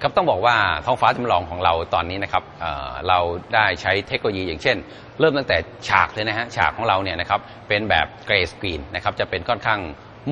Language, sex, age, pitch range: Thai, male, 30-49, 95-120 Hz